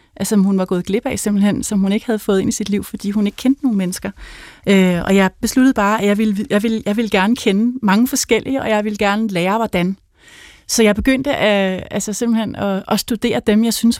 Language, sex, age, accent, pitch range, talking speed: Danish, female, 30-49, native, 190-225 Hz, 215 wpm